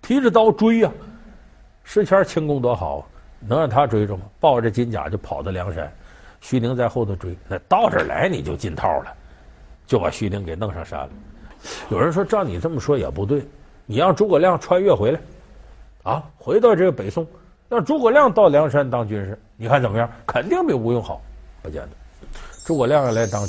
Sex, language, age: male, Chinese, 50-69